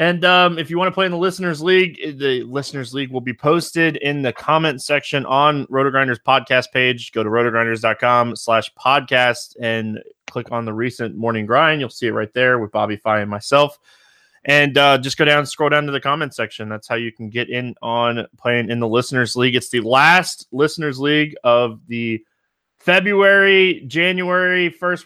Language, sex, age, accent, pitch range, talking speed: English, male, 20-39, American, 120-155 Hz, 195 wpm